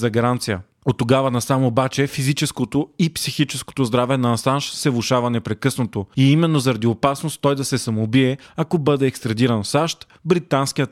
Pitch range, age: 125-155 Hz, 30-49